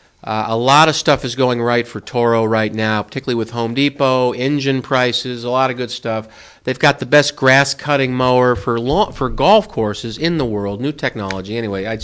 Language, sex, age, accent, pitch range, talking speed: English, male, 50-69, American, 110-145 Hz, 205 wpm